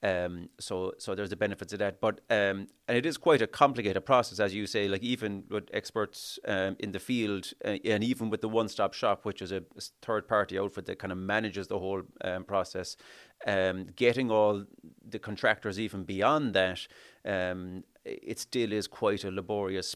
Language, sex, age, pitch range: English, male, 30-49, 95-105 Hz